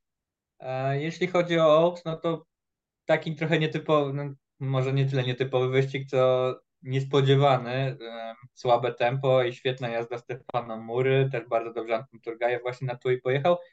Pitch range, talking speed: 115-140 Hz, 155 wpm